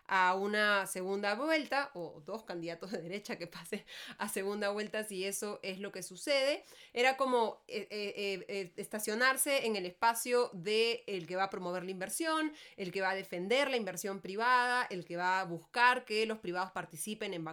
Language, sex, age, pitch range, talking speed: Spanish, female, 20-39, 185-230 Hz, 175 wpm